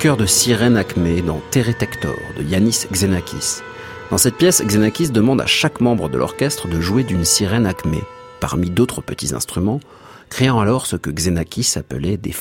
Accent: French